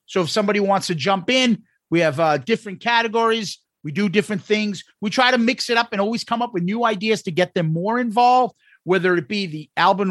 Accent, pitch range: American, 170-220 Hz